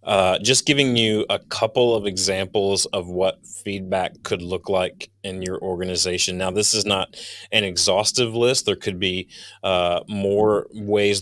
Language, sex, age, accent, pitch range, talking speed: English, male, 30-49, American, 95-105 Hz, 160 wpm